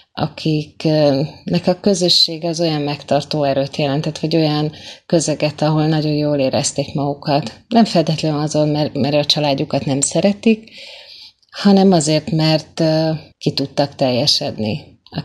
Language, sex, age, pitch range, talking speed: Hungarian, female, 30-49, 145-165 Hz, 120 wpm